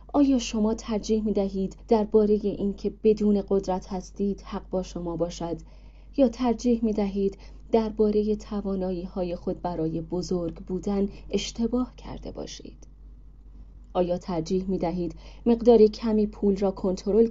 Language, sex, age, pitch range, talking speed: Persian, female, 30-49, 175-225 Hz, 130 wpm